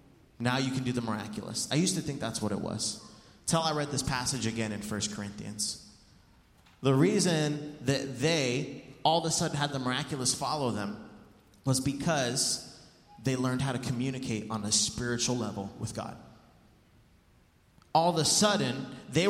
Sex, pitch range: male, 120-160 Hz